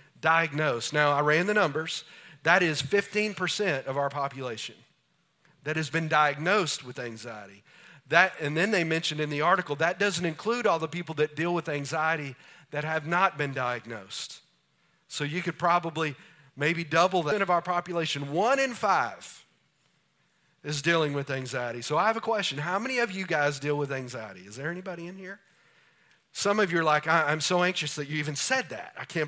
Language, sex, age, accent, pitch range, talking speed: English, male, 40-59, American, 150-185 Hz, 185 wpm